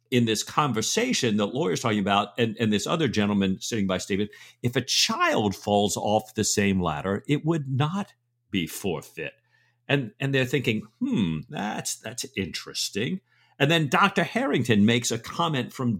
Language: English